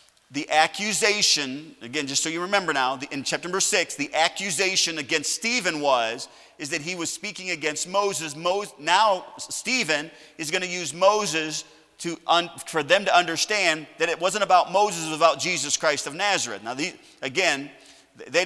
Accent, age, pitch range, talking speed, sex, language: American, 40-59, 165-210 Hz, 170 wpm, male, English